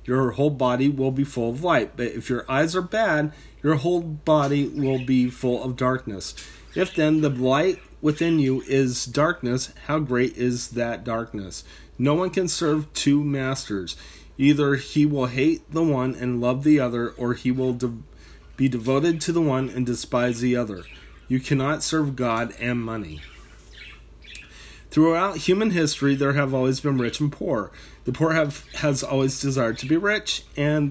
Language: English